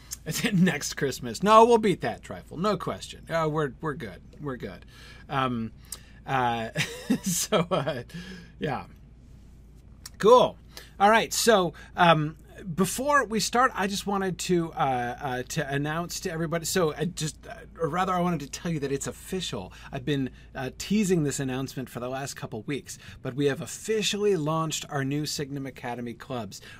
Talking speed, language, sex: 165 wpm, English, male